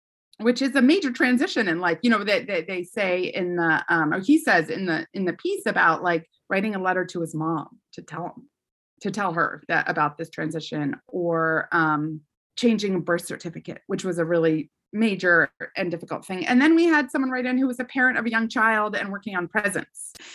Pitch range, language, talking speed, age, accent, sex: 180-255 Hz, English, 220 wpm, 30-49, American, female